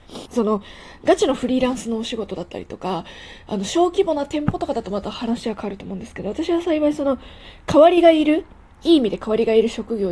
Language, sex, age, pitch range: Japanese, female, 20-39, 215-275 Hz